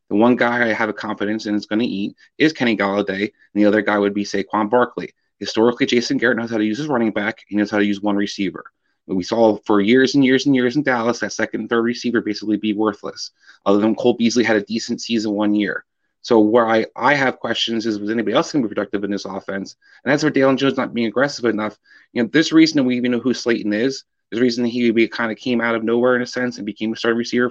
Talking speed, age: 270 wpm, 30-49